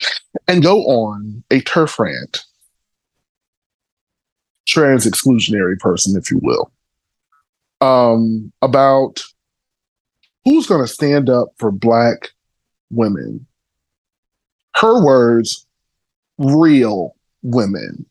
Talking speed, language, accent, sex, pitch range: 85 wpm, English, American, male, 110-140 Hz